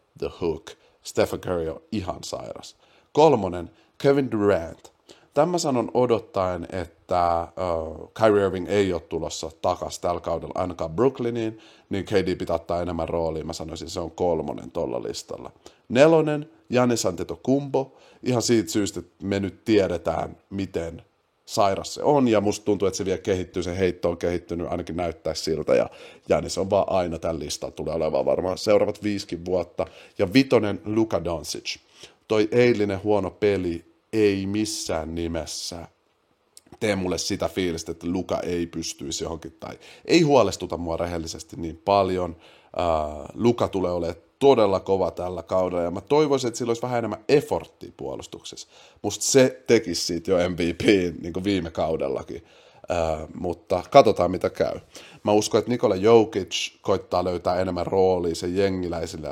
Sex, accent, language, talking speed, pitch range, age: male, native, Finnish, 150 wpm, 85-110 Hz, 30-49